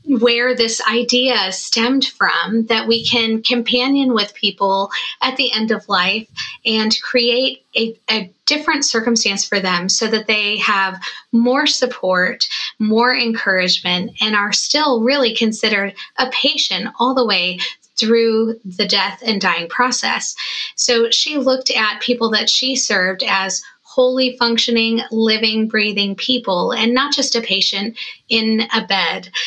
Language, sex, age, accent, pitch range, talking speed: English, female, 20-39, American, 200-245 Hz, 145 wpm